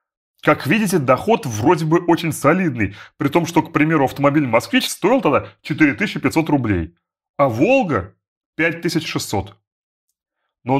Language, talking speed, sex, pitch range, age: Russian, 120 wpm, male, 140-195 Hz, 30-49